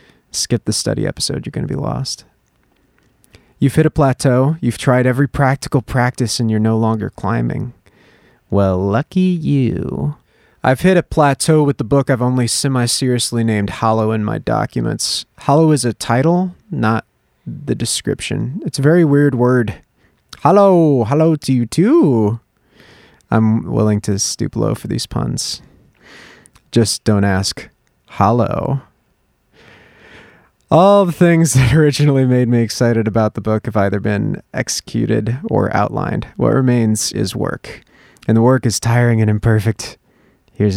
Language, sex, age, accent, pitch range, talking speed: English, male, 30-49, American, 110-140 Hz, 145 wpm